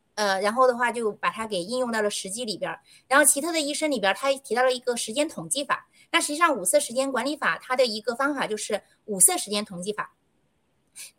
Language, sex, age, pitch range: Chinese, female, 20-39, 200-290 Hz